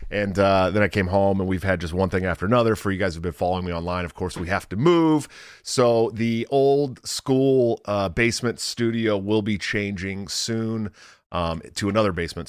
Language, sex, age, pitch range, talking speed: English, male, 30-49, 85-110 Hz, 210 wpm